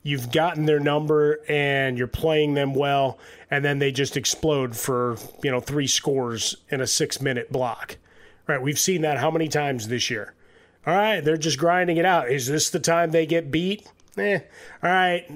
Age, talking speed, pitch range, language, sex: 30-49, 190 wpm, 130-155 Hz, English, male